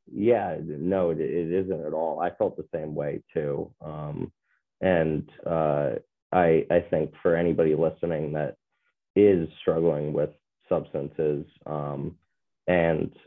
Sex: male